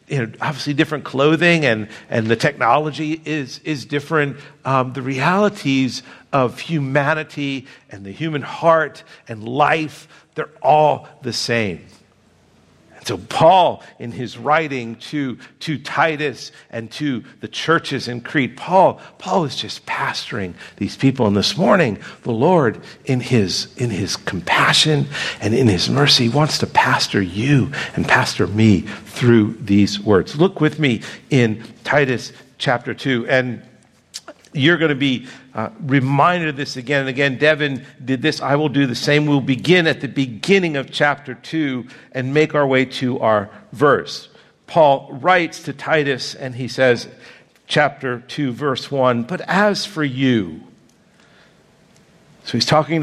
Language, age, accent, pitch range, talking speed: English, 50-69, American, 125-155 Hz, 145 wpm